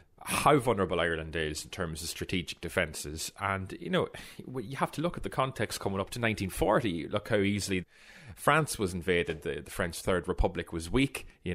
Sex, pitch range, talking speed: male, 85-115 Hz, 190 wpm